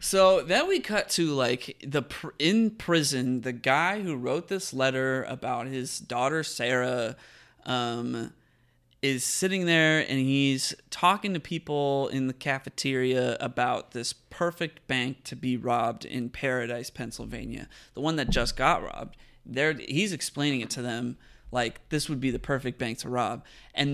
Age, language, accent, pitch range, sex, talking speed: 20-39, English, American, 120-150 Hz, male, 160 wpm